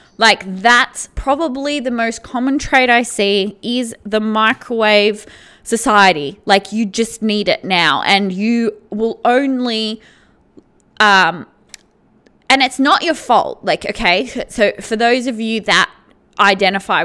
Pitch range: 215-265 Hz